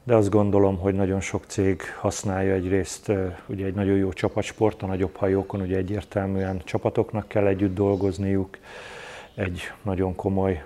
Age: 30-49